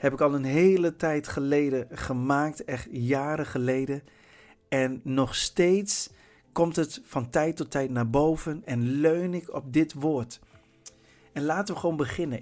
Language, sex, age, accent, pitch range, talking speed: Dutch, male, 50-69, Dutch, 130-175 Hz, 160 wpm